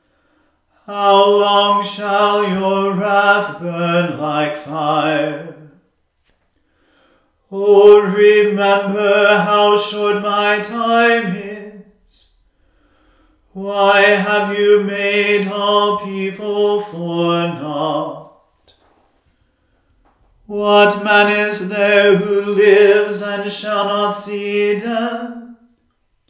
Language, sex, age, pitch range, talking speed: English, male, 40-59, 200-205 Hz, 80 wpm